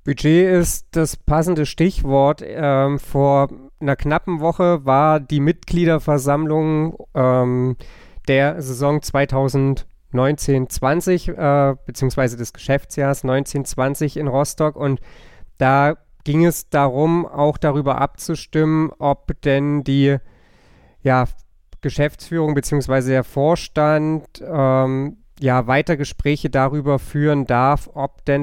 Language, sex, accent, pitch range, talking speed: German, male, German, 125-150 Hz, 105 wpm